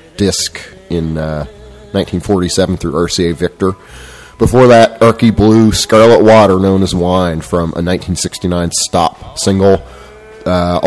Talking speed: 120 wpm